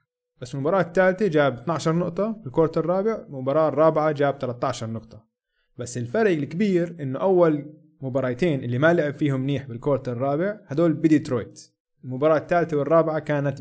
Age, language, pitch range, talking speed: 20-39, Arabic, 135-180 Hz, 140 wpm